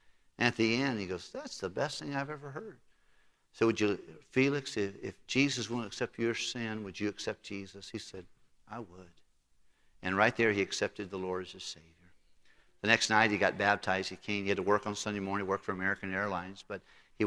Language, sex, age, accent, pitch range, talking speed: English, male, 50-69, American, 95-110 Hz, 215 wpm